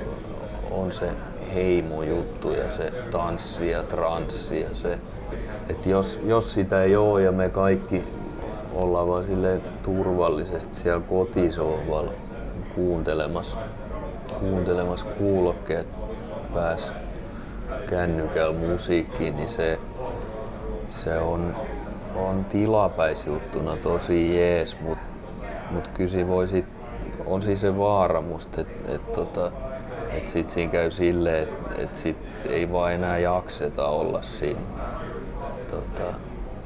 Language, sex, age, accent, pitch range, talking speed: Finnish, male, 30-49, native, 85-100 Hz, 100 wpm